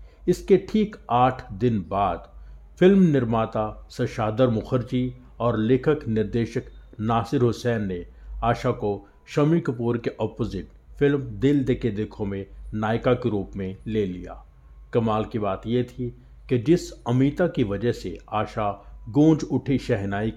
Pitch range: 100-125 Hz